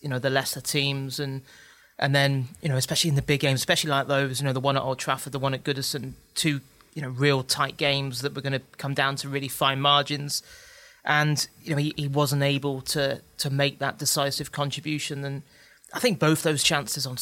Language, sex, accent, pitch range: English, male, British, 130-150 Hz